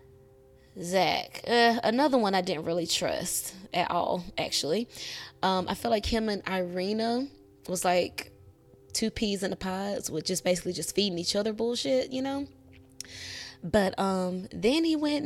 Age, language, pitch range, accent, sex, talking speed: 20-39, English, 185-275 Hz, American, female, 155 wpm